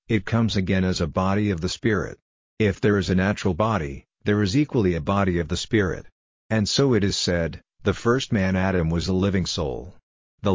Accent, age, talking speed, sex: American, 50-69, 210 wpm, male